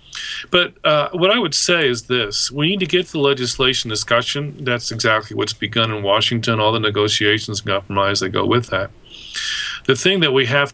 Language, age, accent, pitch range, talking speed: English, 40-59, American, 110-135 Hz, 200 wpm